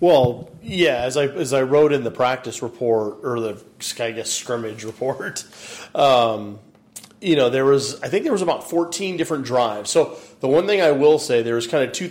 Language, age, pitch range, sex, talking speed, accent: English, 30-49, 115-130 Hz, male, 210 wpm, American